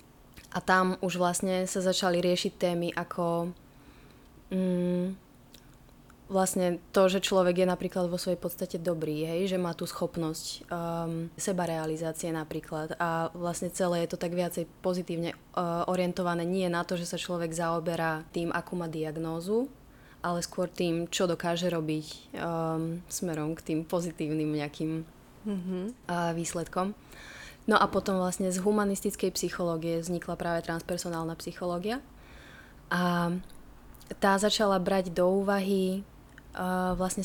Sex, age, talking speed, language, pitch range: female, 20-39, 130 wpm, Slovak, 165-185 Hz